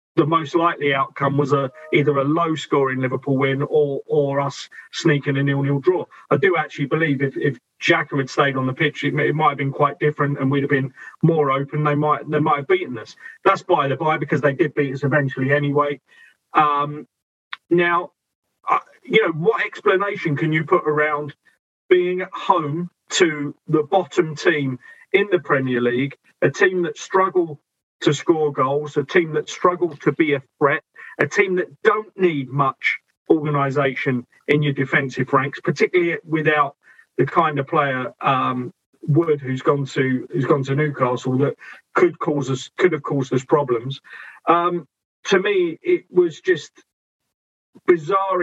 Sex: male